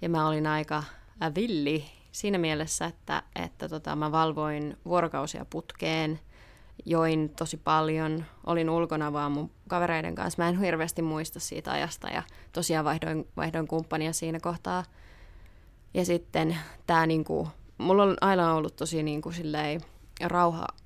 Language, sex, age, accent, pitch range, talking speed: Finnish, female, 20-39, native, 150-175 Hz, 140 wpm